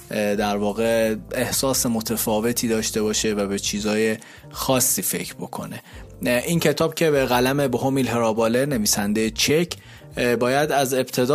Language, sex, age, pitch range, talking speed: Persian, male, 30-49, 110-135 Hz, 125 wpm